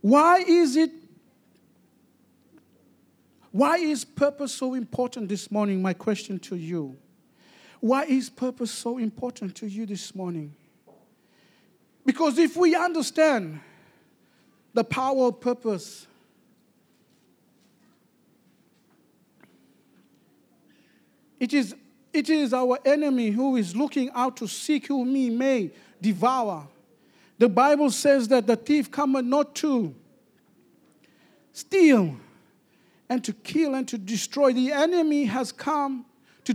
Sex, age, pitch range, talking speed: male, 50-69, 220-285 Hz, 110 wpm